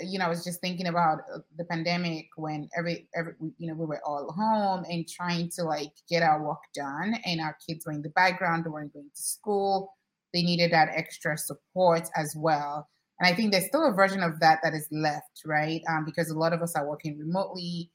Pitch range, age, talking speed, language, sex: 155-180 Hz, 20-39, 225 wpm, English, female